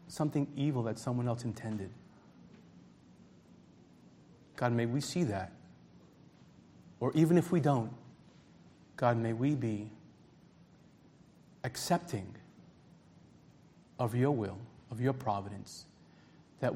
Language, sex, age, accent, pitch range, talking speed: English, male, 40-59, American, 115-145 Hz, 100 wpm